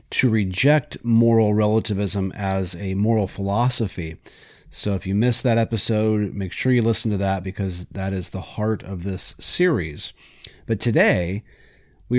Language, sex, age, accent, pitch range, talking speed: English, male, 30-49, American, 95-125 Hz, 155 wpm